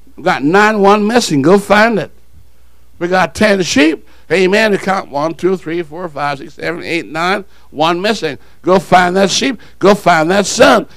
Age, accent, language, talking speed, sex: 60-79, American, English, 185 wpm, male